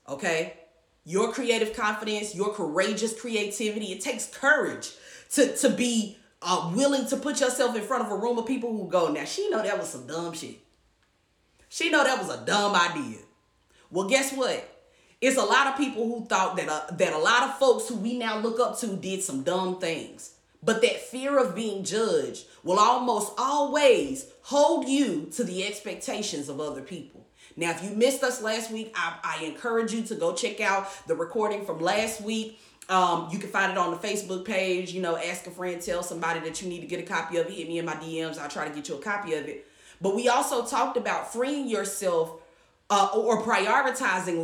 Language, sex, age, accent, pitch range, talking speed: English, female, 30-49, American, 180-260 Hz, 210 wpm